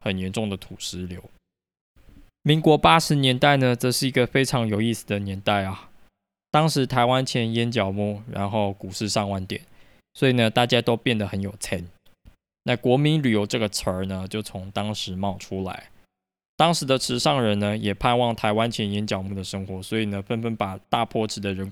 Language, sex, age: Chinese, male, 20-39